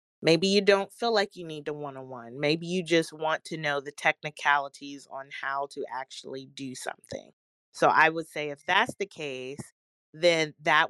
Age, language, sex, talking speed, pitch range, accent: 30-49, English, female, 195 wpm, 145-195 Hz, American